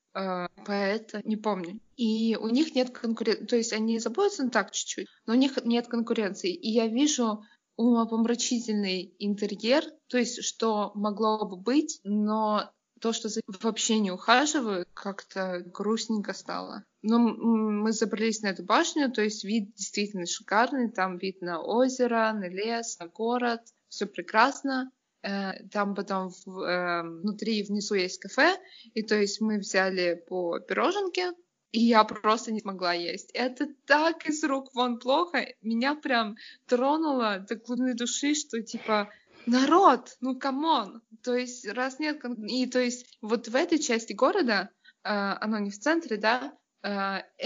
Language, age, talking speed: Russian, 20-39, 145 wpm